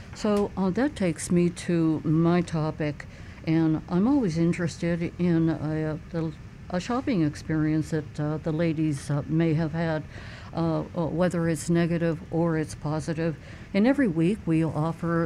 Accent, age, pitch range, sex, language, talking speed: American, 60-79, 155-180 Hz, female, English, 155 wpm